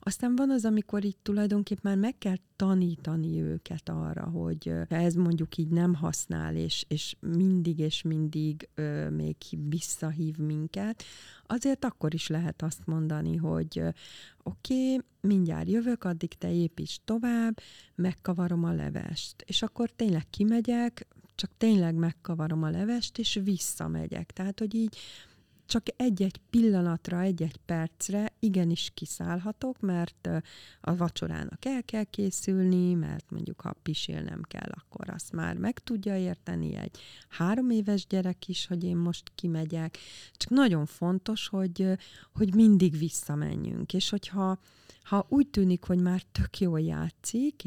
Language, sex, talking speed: Hungarian, female, 140 wpm